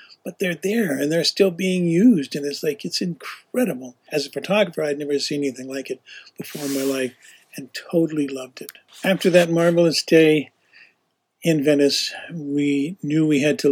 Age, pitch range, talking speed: 50-69, 140-170 Hz, 180 wpm